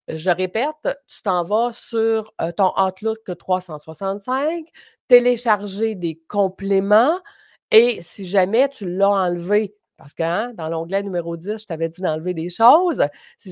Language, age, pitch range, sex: French, 50-69, 175-225 Hz, female